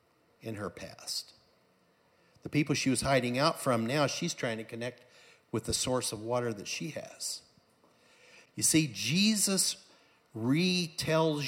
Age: 60-79